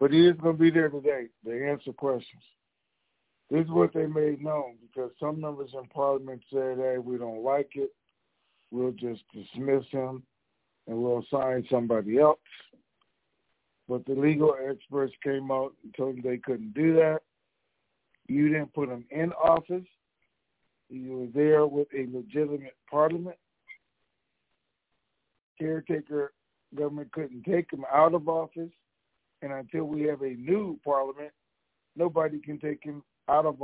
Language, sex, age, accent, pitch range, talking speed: English, male, 60-79, American, 125-150 Hz, 150 wpm